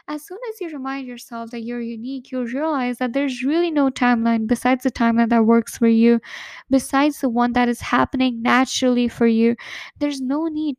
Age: 10-29